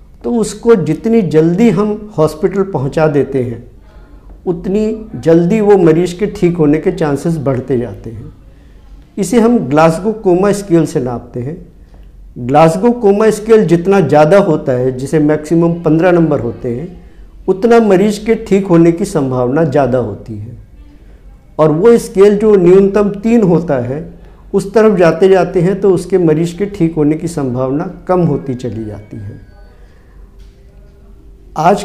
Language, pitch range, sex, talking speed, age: Hindi, 140-195 Hz, male, 150 wpm, 50-69